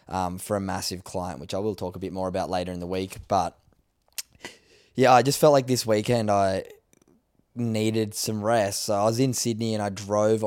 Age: 10-29